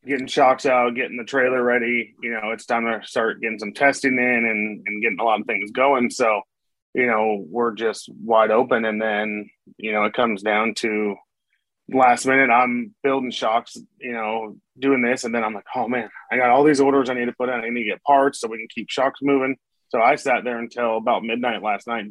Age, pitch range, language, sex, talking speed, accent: 30-49, 105-125 Hz, English, male, 230 wpm, American